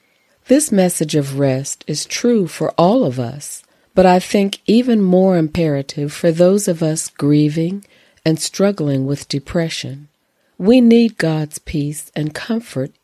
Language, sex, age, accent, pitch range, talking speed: English, female, 50-69, American, 145-180 Hz, 145 wpm